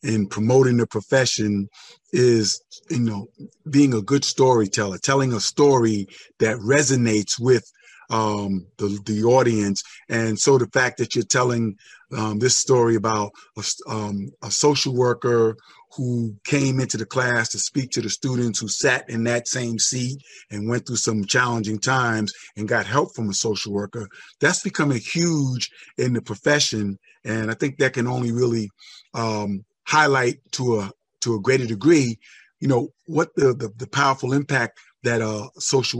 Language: English